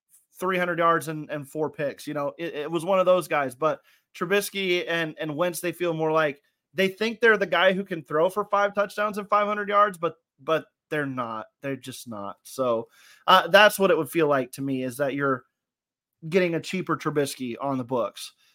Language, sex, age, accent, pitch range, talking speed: English, male, 30-49, American, 150-190 Hz, 210 wpm